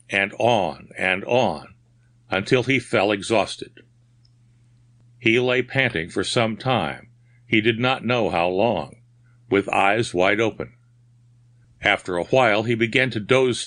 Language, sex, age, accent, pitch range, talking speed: English, male, 60-79, American, 110-120 Hz, 135 wpm